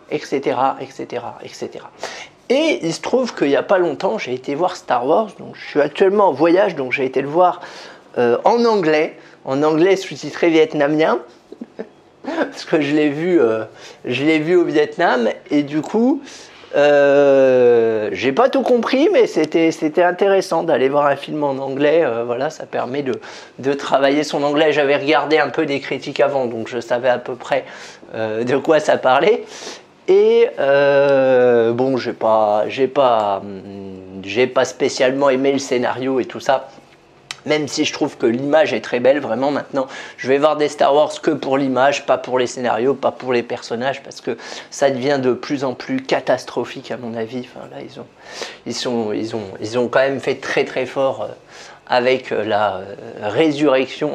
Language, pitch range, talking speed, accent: French, 125-160 Hz, 180 wpm, French